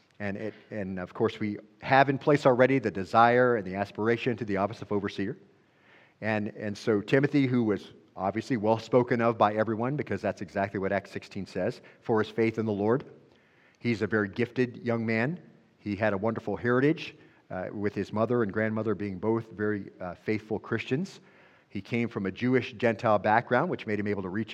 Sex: male